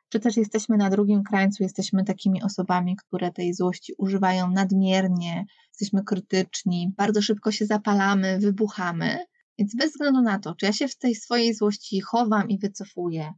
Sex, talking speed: female, 160 wpm